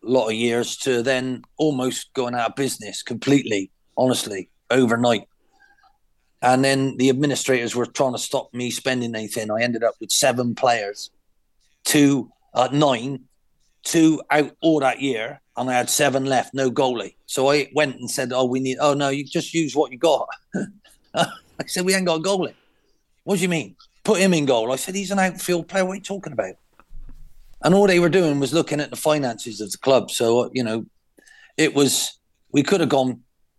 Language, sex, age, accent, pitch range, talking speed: English, male, 40-59, British, 120-145 Hz, 195 wpm